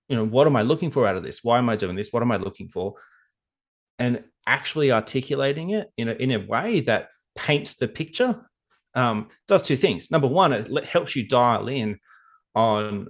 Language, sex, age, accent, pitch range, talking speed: English, male, 30-49, Australian, 110-135 Hz, 215 wpm